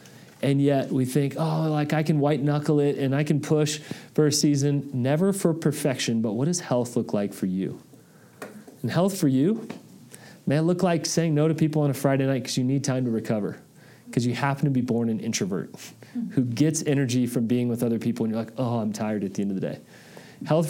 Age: 40-59